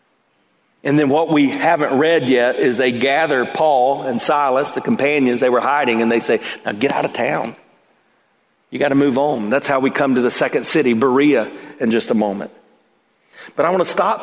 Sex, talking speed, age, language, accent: male, 205 wpm, 40-59, English, American